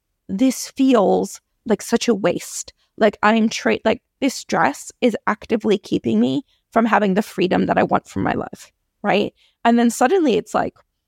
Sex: female